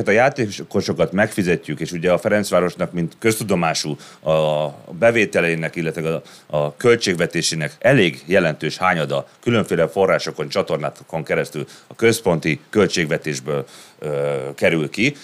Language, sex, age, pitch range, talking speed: Hungarian, male, 30-49, 80-115 Hz, 105 wpm